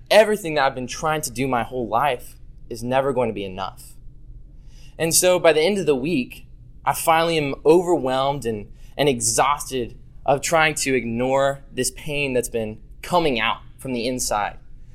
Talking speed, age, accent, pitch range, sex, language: 175 wpm, 20-39, American, 125-155 Hz, male, English